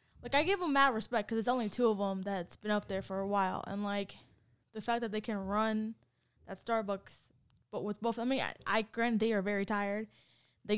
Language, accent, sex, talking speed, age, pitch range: English, American, female, 240 wpm, 10-29, 195-230 Hz